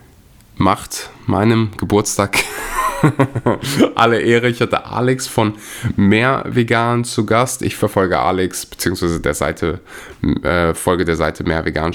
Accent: German